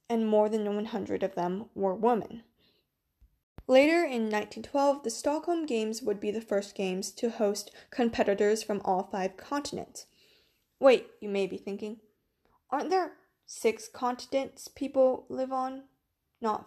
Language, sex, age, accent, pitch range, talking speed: English, female, 20-39, American, 200-255 Hz, 140 wpm